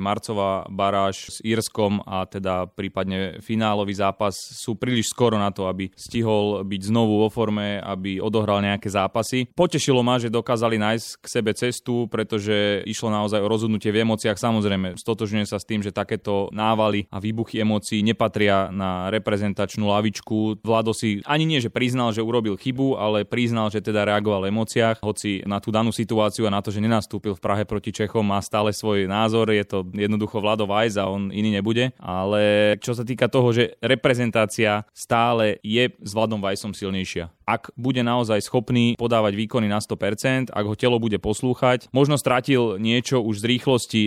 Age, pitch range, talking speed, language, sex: 20-39, 100-115 Hz, 175 wpm, Slovak, male